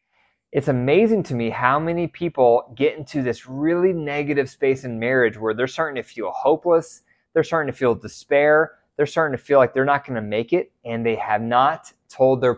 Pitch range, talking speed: 125-165 Hz, 205 wpm